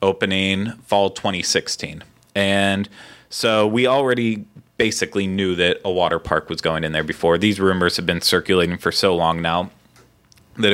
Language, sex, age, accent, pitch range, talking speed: English, male, 20-39, American, 95-105 Hz, 155 wpm